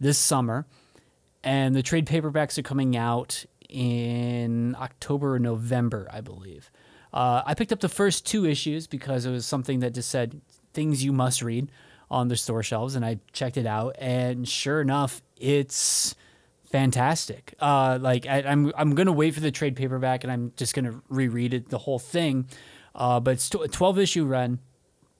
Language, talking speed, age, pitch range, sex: English, 185 wpm, 20-39, 125-155 Hz, male